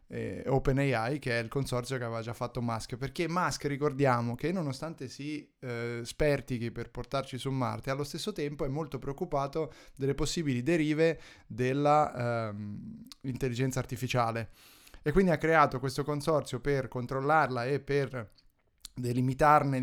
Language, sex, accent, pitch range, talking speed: Italian, male, native, 125-145 Hz, 135 wpm